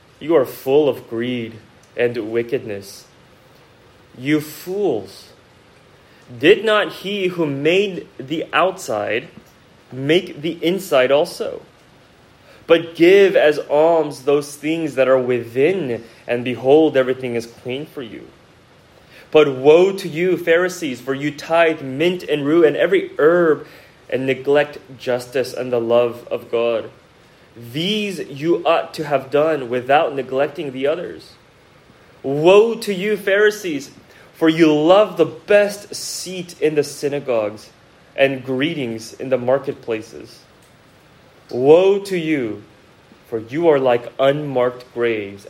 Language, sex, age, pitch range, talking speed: English, male, 20-39, 120-165 Hz, 125 wpm